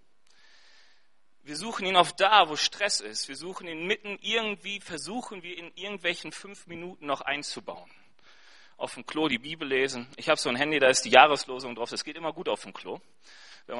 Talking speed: 200 wpm